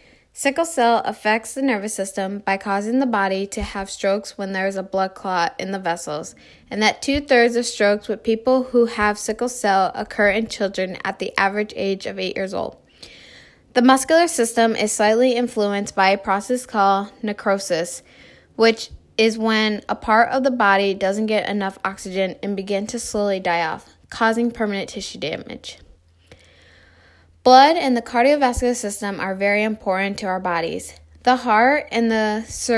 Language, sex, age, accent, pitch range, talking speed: English, female, 10-29, American, 195-230 Hz, 170 wpm